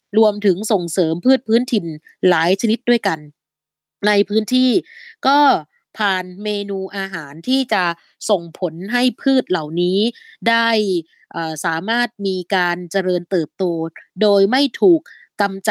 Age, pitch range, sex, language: 20-39, 180-230 Hz, female, Thai